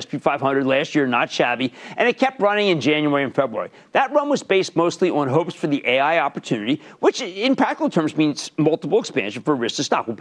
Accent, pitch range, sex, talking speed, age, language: American, 145-210 Hz, male, 225 wpm, 50-69, English